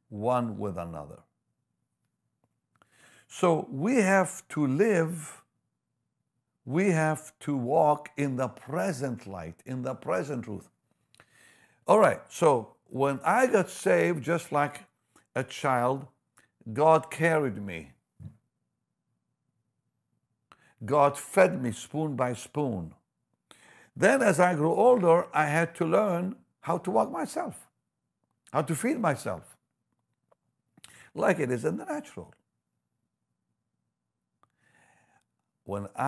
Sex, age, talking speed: male, 60-79, 105 wpm